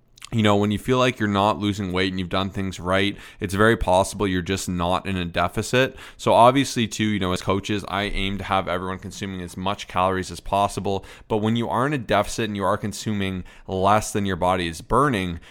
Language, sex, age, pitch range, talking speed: English, male, 20-39, 90-105 Hz, 230 wpm